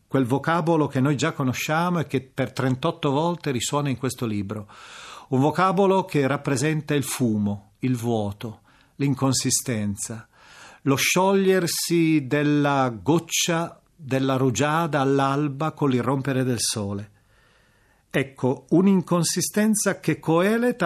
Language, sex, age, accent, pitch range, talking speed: Italian, male, 40-59, native, 120-160 Hz, 110 wpm